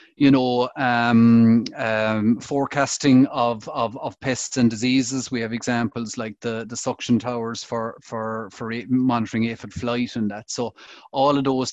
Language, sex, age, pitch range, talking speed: English, male, 30-49, 115-130 Hz, 160 wpm